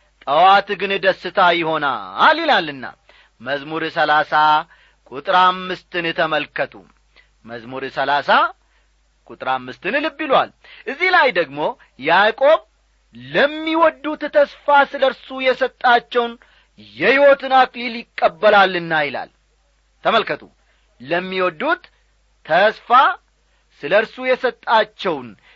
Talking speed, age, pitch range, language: 75 wpm, 40-59, 185-280 Hz, Amharic